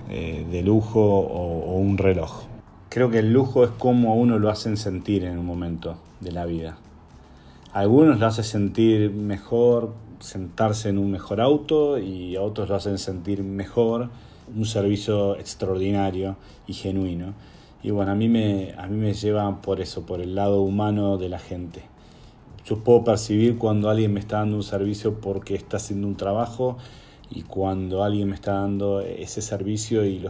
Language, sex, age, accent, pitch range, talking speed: Spanish, male, 30-49, Argentinian, 95-110 Hz, 180 wpm